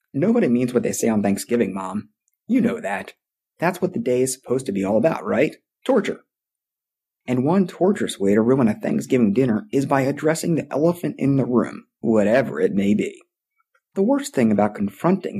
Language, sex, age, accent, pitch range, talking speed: English, male, 30-49, American, 120-180 Hz, 190 wpm